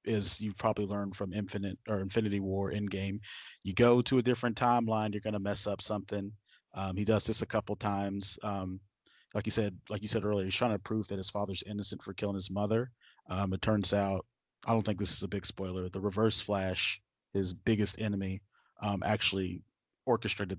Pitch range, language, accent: 95-110 Hz, English, American